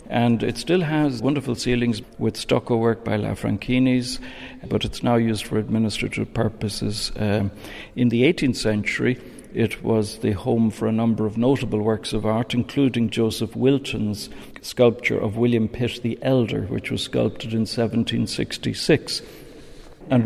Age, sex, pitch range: 60-79, male, 110-130 Hz